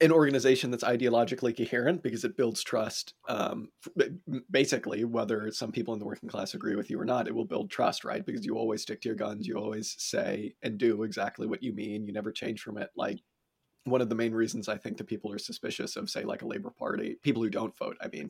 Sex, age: male, 30-49